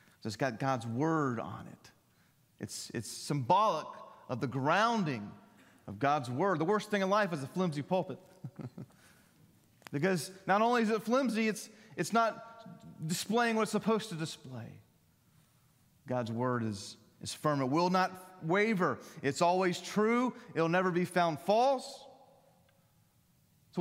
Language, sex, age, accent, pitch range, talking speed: English, male, 30-49, American, 135-210 Hz, 145 wpm